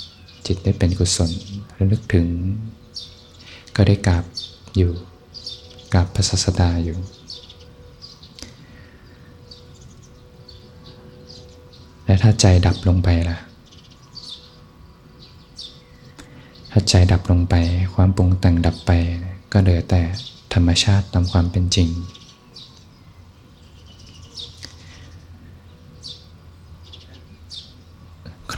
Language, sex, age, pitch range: Thai, male, 20-39, 85-95 Hz